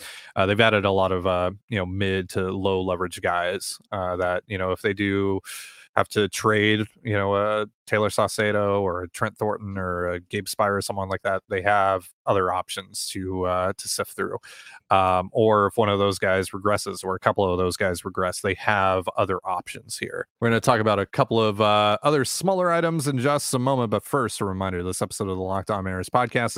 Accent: American